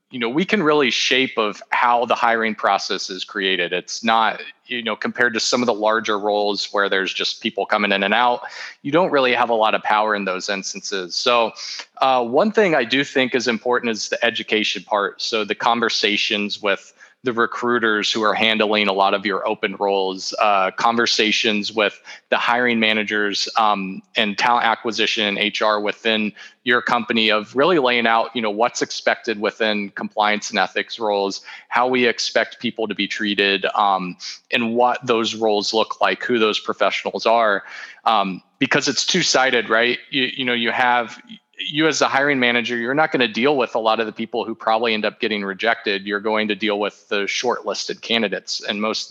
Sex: male